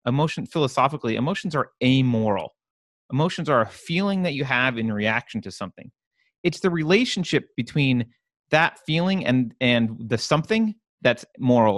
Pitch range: 115-165 Hz